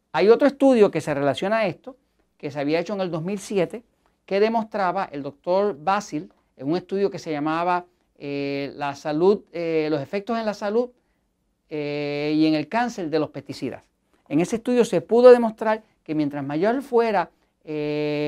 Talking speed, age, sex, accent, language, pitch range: 175 wpm, 40-59, male, American, Spanish, 150-195 Hz